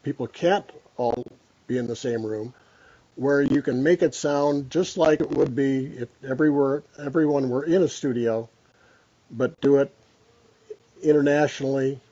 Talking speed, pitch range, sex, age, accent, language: 145 wpm, 120-145 Hz, male, 50-69, American, English